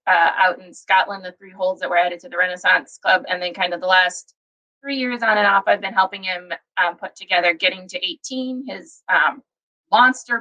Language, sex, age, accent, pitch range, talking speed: English, female, 20-39, American, 185-245 Hz, 220 wpm